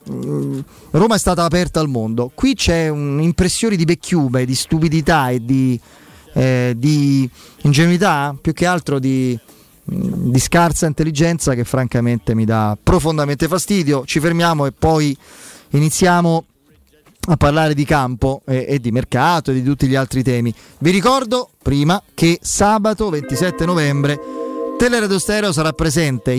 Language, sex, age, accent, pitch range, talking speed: Italian, male, 30-49, native, 130-165 Hz, 140 wpm